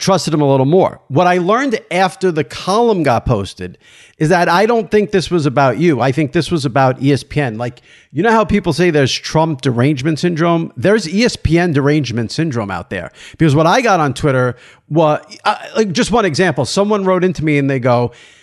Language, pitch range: English, 140-185 Hz